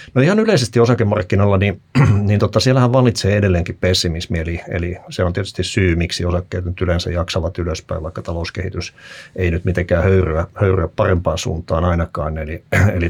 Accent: native